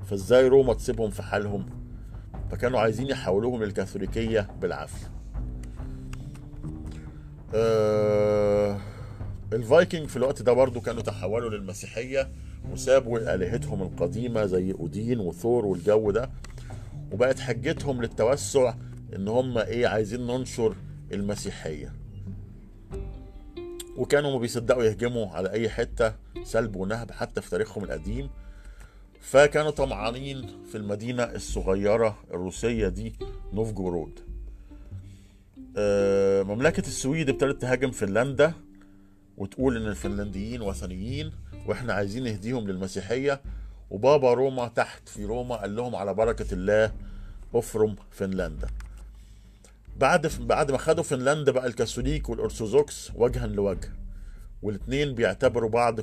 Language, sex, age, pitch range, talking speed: Arabic, male, 50-69, 100-125 Hz, 100 wpm